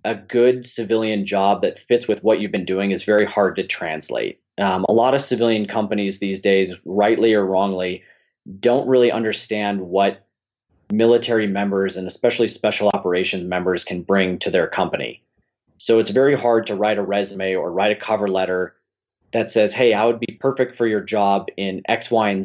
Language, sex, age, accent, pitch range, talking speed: English, male, 30-49, American, 95-115 Hz, 185 wpm